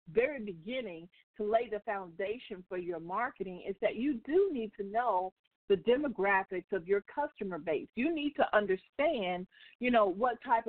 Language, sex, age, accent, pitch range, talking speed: English, female, 50-69, American, 195-265 Hz, 170 wpm